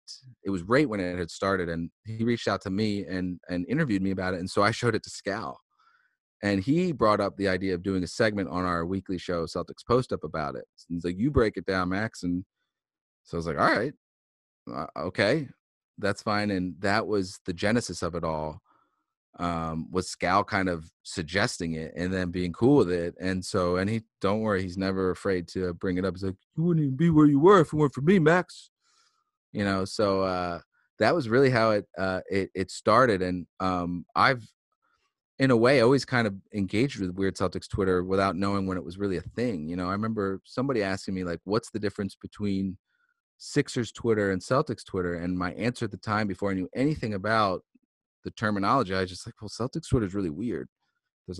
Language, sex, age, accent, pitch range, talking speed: English, male, 30-49, American, 90-110 Hz, 220 wpm